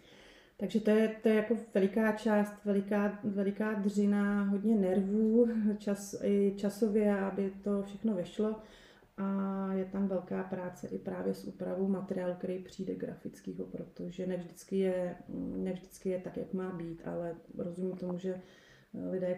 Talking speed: 145 wpm